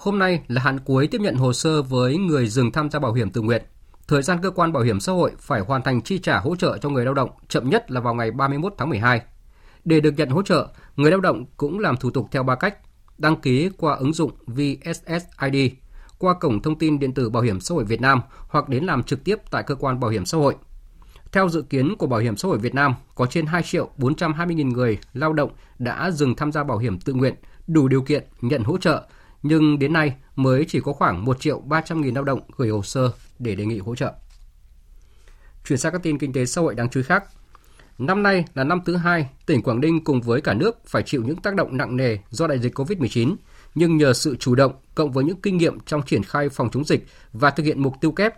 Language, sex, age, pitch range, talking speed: Vietnamese, male, 20-39, 125-155 Hz, 245 wpm